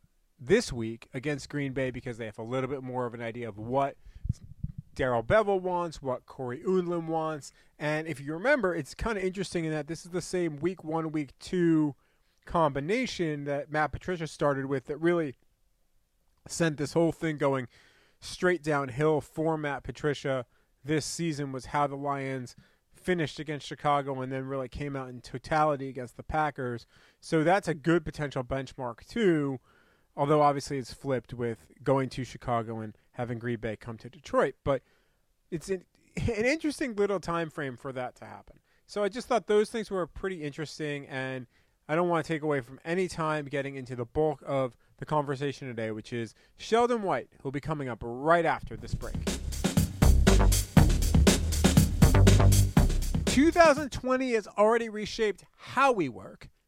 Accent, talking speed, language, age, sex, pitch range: American, 170 wpm, English, 30-49, male, 125-165 Hz